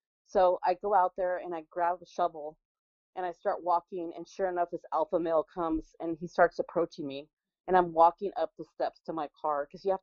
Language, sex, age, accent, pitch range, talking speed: English, female, 30-49, American, 160-190 Hz, 225 wpm